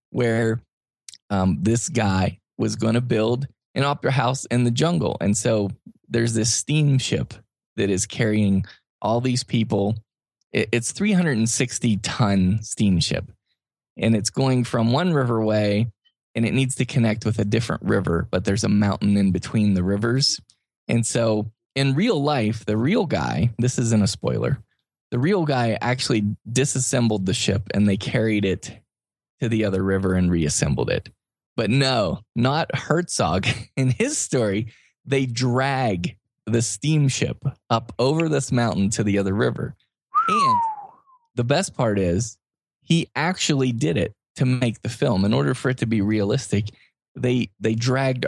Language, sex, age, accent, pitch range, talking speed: English, male, 20-39, American, 105-135 Hz, 155 wpm